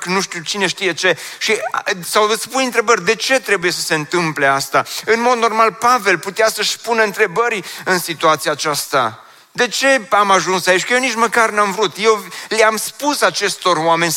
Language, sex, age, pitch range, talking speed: Romanian, male, 30-49, 110-185 Hz, 185 wpm